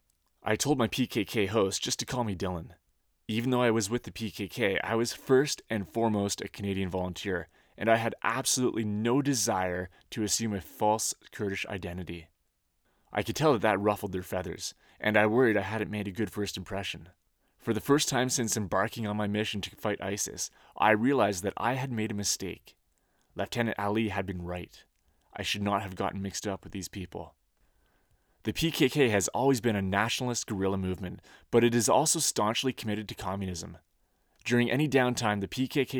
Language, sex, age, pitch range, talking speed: English, male, 20-39, 95-120 Hz, 185 wpm